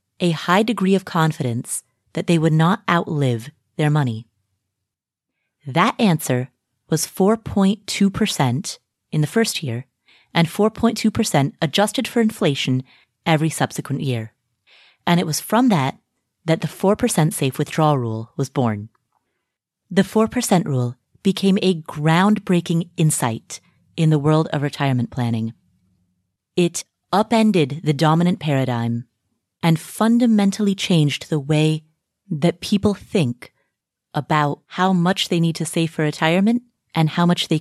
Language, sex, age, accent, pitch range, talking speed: English, female, 30-49, American, 135-190 Hz, 130 wpm